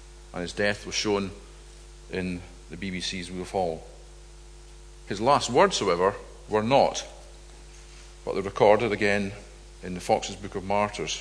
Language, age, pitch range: English, 50-69, 95-125 Hz